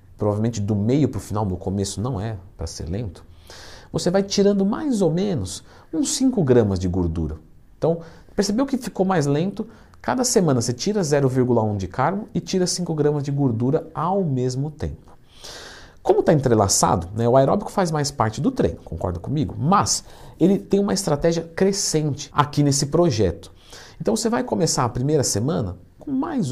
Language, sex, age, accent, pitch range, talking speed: Portuguese, male, 50-69, Brazilian, 110-175 Hz, 170 wpm